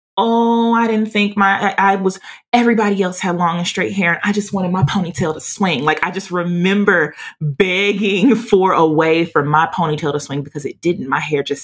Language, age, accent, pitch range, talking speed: English, 30-49, American, 145-195 Hz, 215 wpm